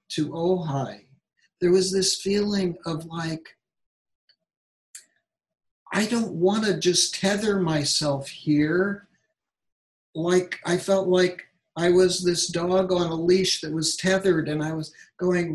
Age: 60-79